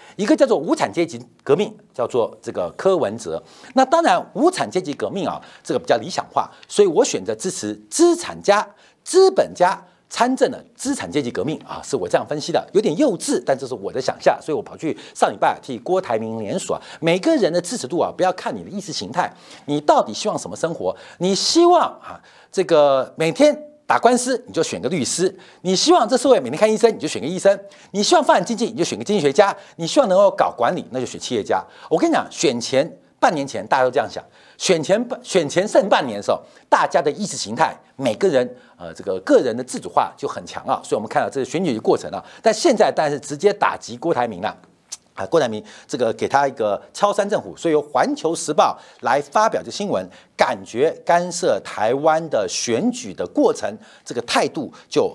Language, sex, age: Chinese, male, 50-69